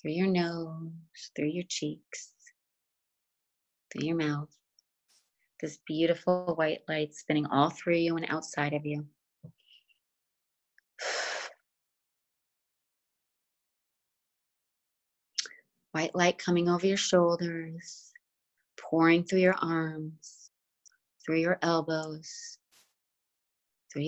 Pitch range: 150-175 Hz